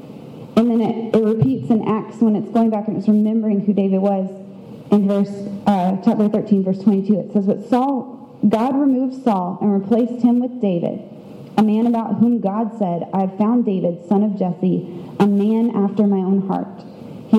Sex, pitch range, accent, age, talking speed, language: female, 190-220 Hz, American, 30-49, 195 wpm, English